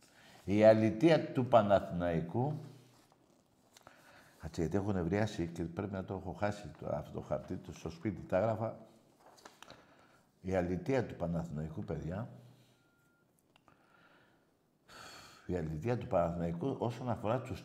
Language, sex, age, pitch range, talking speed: Greek, male, 60-79, 100-140 Hz, 120 wpm